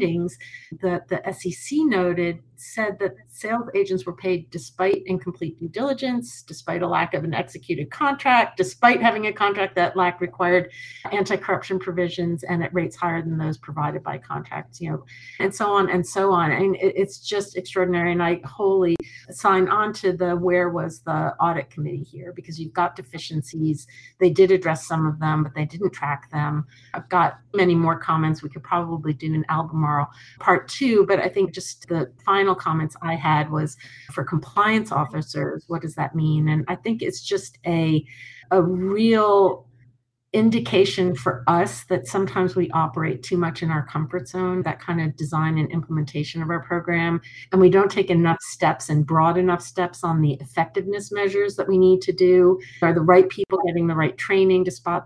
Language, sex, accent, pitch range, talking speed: English, female, American, 160-195 Hz, 185 wpm